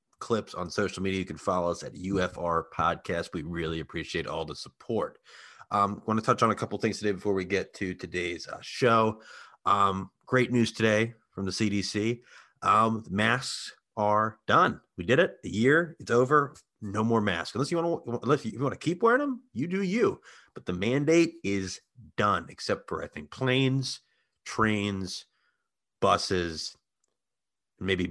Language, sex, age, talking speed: English, male, 30-49, 175 wpm